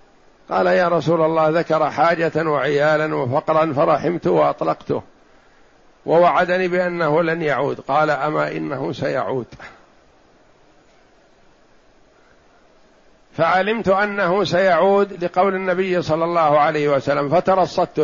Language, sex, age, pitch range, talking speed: Arabic, male, 60-79, 150-180 Hz, 95 wpm